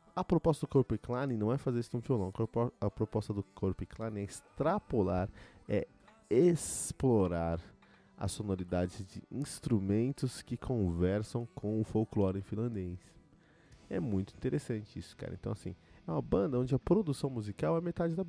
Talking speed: 150 wpm